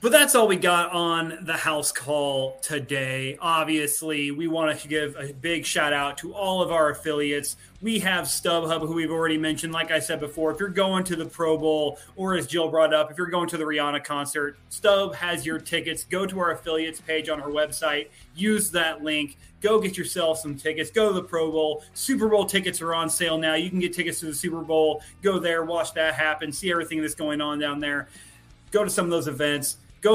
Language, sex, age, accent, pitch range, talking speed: English, male, 30-49, American, 155-180 Hz, 225 wpm